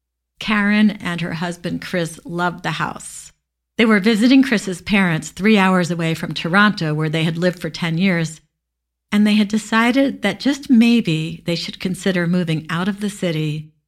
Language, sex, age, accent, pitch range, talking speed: English, female, 50-69, American, 155-205 Hz, 175 wpm